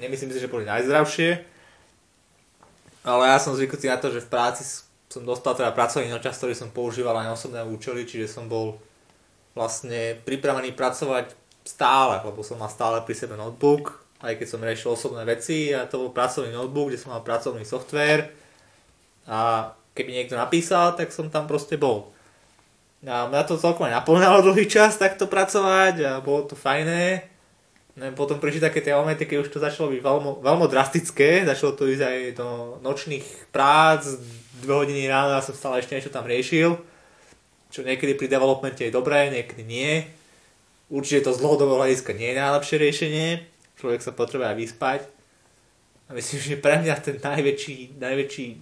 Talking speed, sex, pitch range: 165 wpm, male, 120-145 Hz